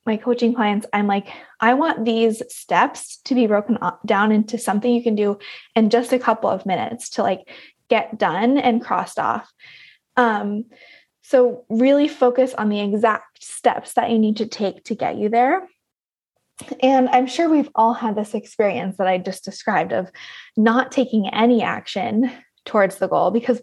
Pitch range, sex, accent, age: 205-245 Hz, female, American, 20-39